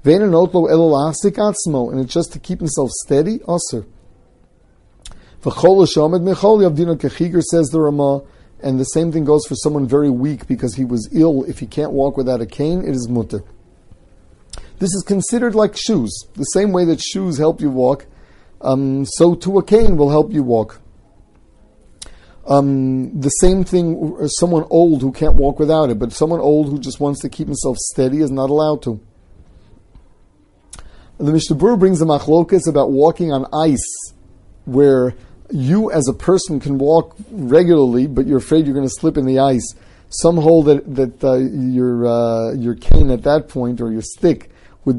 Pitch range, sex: 120-160 Hz, male